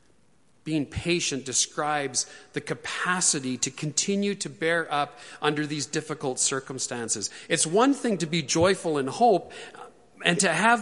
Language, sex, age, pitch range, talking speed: English, male, 40-59, 140-200 Hz, 140 wpm